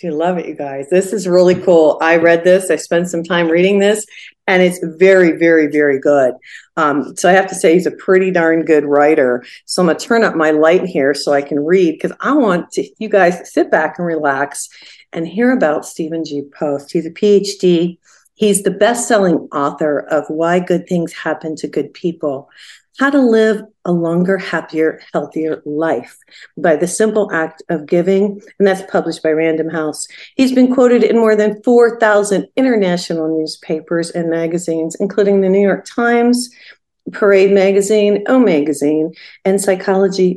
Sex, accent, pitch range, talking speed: female, American, 165-210 Hz, 180 wpm